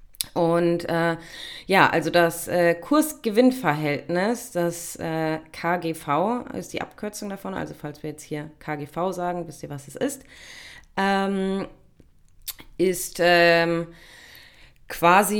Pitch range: 145-185 Hz